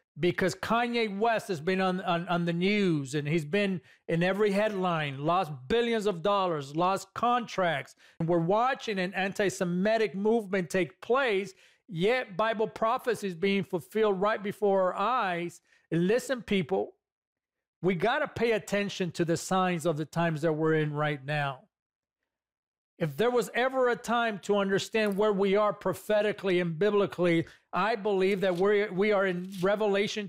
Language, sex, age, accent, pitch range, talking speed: English, male, 40-59, American, 185-225 Hz, 155 wpm